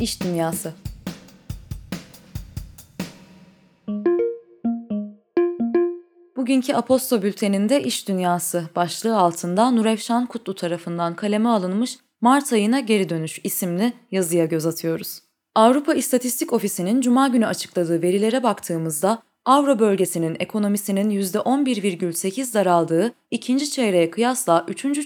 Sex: female